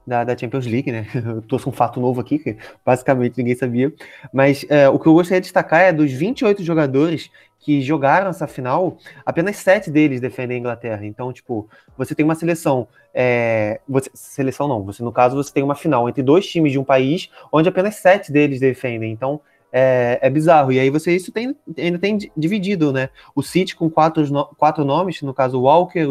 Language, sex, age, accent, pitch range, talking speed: Portuguese, male, 20-39, Brazilian, 130-175 Hz, 200 wpm